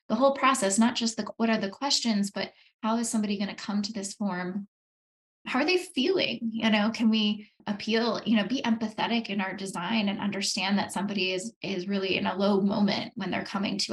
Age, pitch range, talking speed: 10-29, 190-220 Hz, 215 wpm